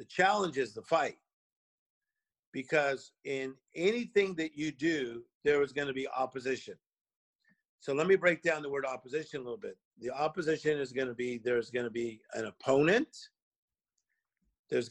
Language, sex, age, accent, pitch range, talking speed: English, male, 50-69, American, 130-160 Hz, 165 wpm